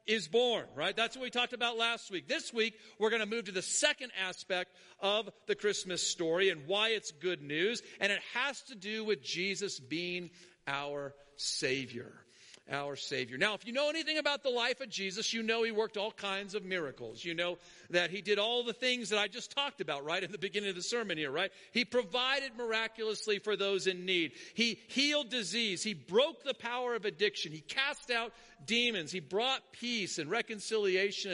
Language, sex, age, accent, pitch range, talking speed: English, male, 50-69, American, 190-240 Hz, 205 wpm